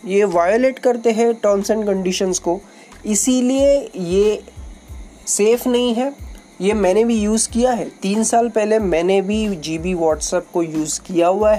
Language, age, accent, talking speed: Hindi, 20-39, native, 150 wpm